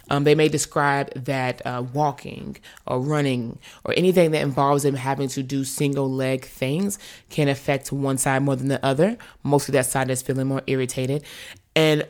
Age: 20-39